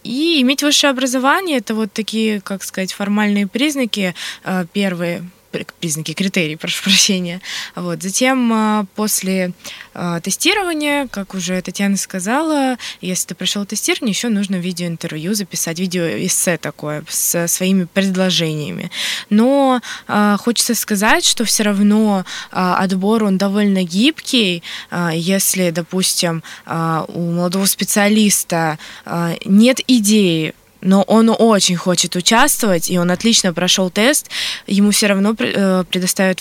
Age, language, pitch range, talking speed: 20-39, Russian, 175-220 Hz, 115 wpm